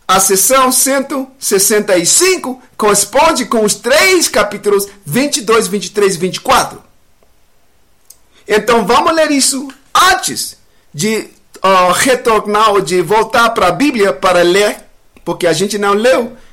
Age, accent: 50-69, Brazilian